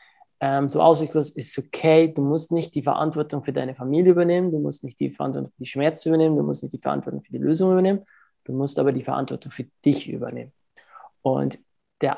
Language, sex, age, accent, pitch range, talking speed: German, male, 20-39, German, 135-160 Hz, 205 wpm